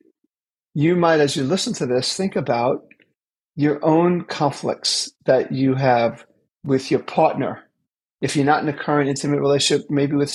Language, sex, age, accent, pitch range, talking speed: English, male, 50-69, American, 140-175 Hz, 160 wpm